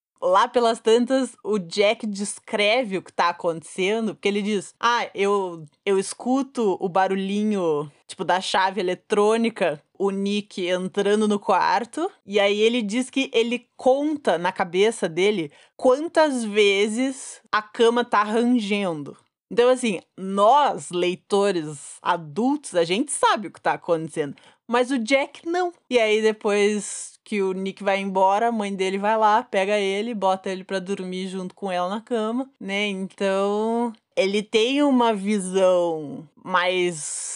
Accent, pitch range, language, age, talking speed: Brazilian, 175-225 Hz, Portuguese, 20-39, 145 wpm